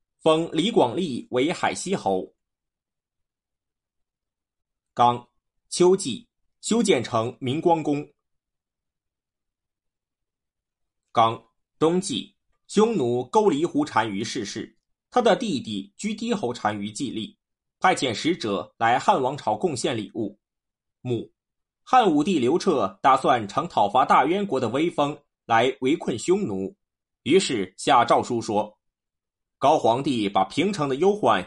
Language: Chinese